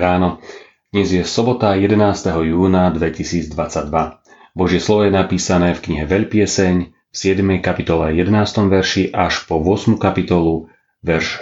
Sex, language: male, Slovak